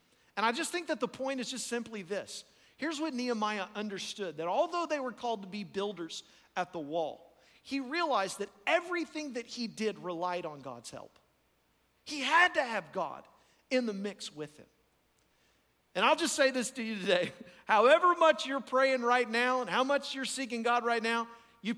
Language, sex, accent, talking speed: English, male, American, 195 wpm